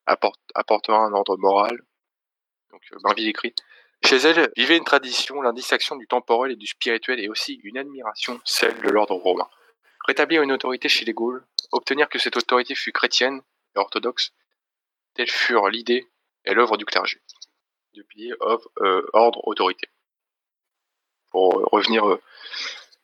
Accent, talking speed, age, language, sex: French, 150 wpm, 20-39, French, male